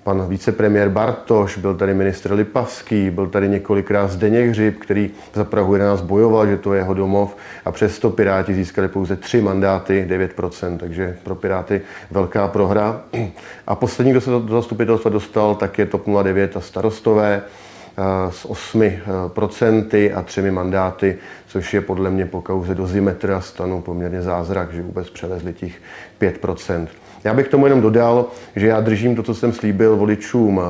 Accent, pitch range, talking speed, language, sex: native, 95-105 Hz, 165 wpm, Czech, male